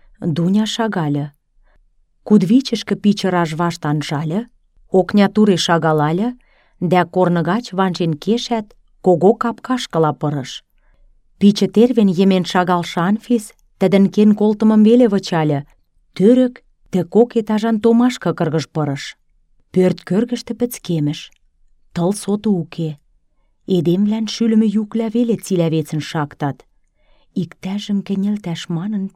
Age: 30-49